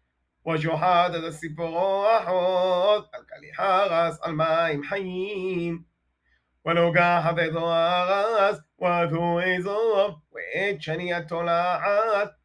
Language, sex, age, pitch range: Hebrew, male, 30-49, 165-195 Hz